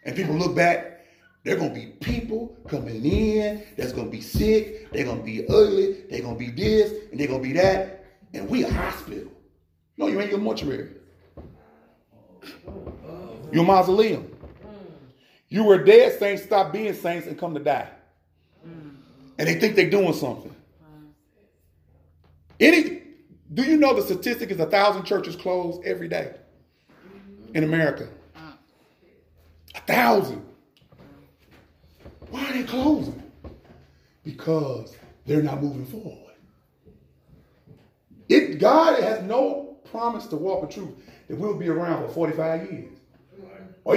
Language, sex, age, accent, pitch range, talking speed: English, male, 30-49, American, 145-210 Hz, 135 wpm